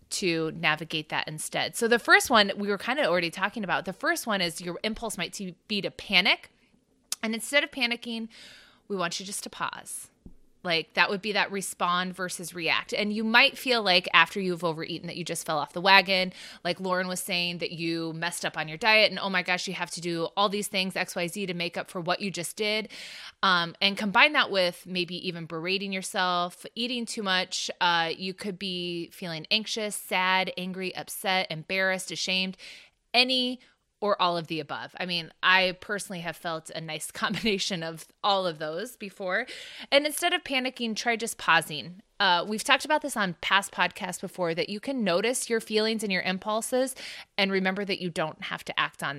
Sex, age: female, 20-39